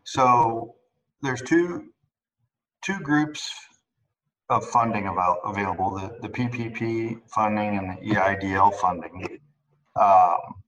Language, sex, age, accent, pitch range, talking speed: English, male, 40-59, American, 100-125 Hz, 100 wpm